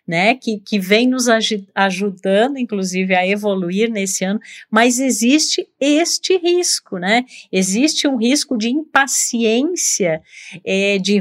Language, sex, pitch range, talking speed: Portuguese, female, 190-230 Hz, 120 wpm